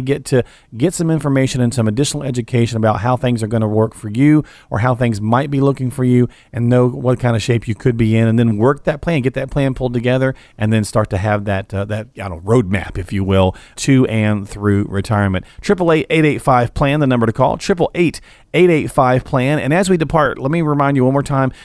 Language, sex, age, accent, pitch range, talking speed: English, male, 40-59, American, 110-145 Hz, 240 wpm